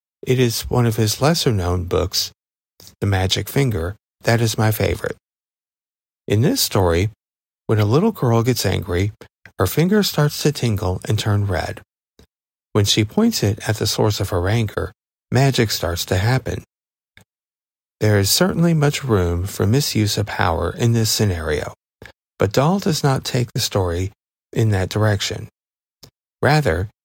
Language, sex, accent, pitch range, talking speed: English, male, American, 100-125 Hz, 155 wpm